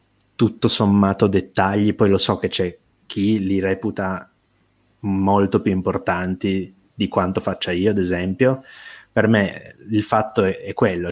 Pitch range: 95-110 Hz